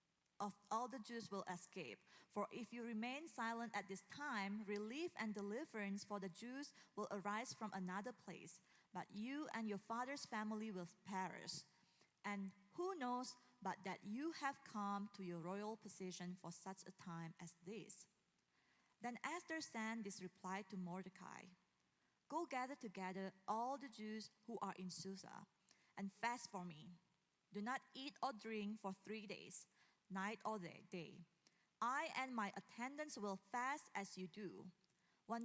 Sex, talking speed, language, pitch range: female, 155 wpm, English, 185-225 Hz